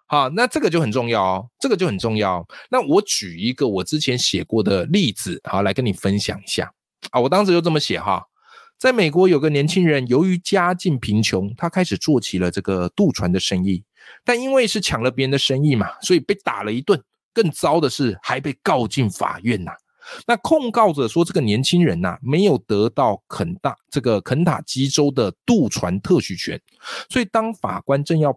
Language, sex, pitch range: Chinese, male, 130-210 Hz